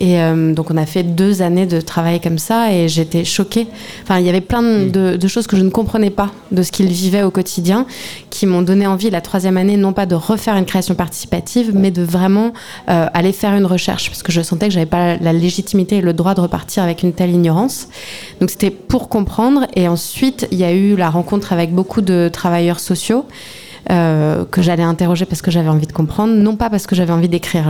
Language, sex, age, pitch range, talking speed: French, female, 20-39, 170-205 Hz, 235 wpm